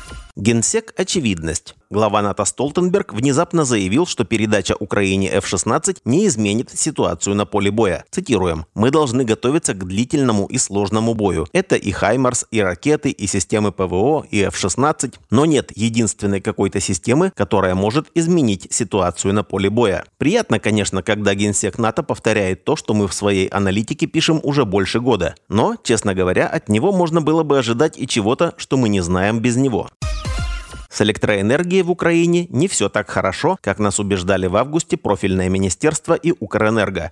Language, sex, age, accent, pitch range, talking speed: Russian, male, 30-49, native, 100-135 Hz, 160 wpm